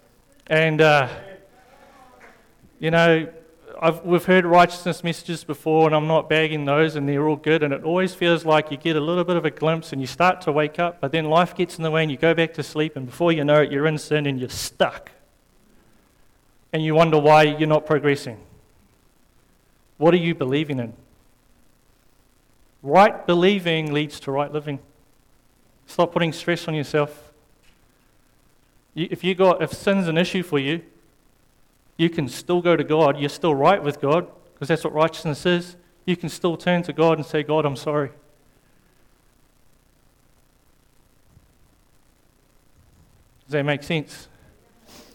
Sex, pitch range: male, 145-170 Hz